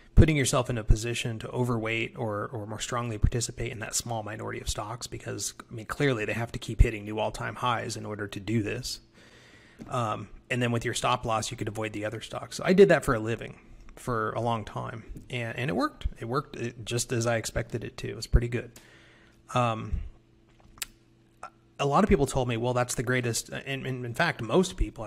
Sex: male